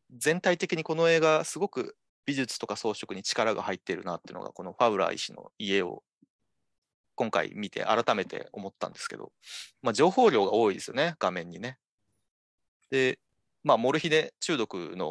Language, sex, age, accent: Japanese, male, 30-49, native